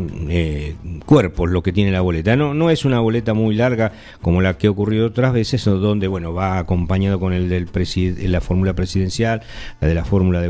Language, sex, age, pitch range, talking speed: English, male, 50-69, 95-130 Hz, 215 wpm